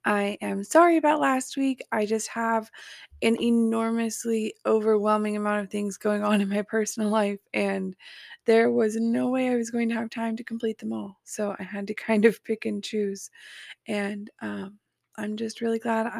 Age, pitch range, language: 20-39, 205-245 Hz, English